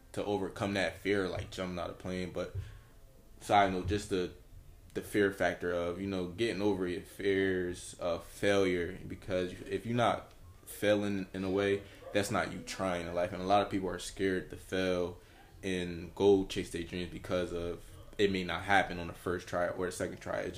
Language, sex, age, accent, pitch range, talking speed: English, male, 20-39, American, 90-100 Hz, 200 wpm